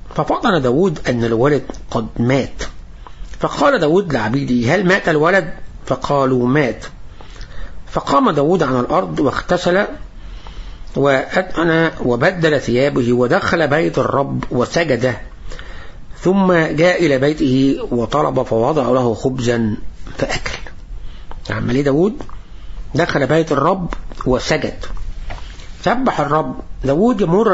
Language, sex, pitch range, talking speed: English, male, 120-165 Hz, 100 wpm